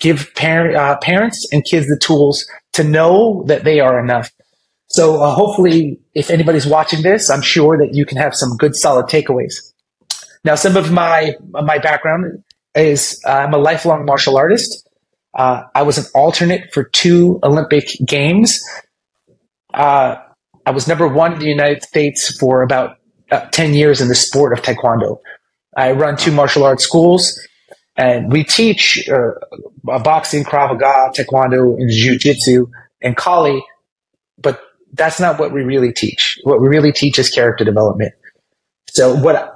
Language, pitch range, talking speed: English, 135-165 Hz, 160 wpm